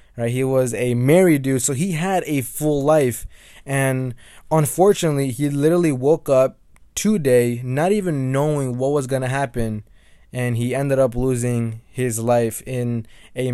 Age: 20-39